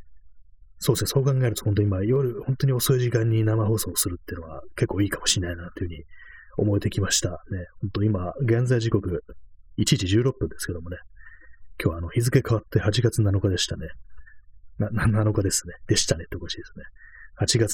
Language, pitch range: Japanese, 90-120 Hz